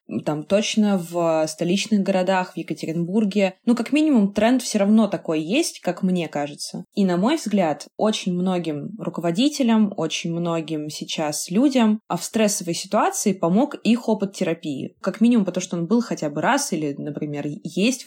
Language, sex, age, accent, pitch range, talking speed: Russian, female, 20-39, native, 175-220 Hz, 165 wpm